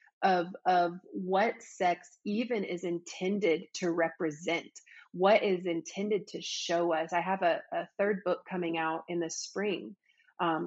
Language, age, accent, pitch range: English, 30-49, American, 175-225 Hz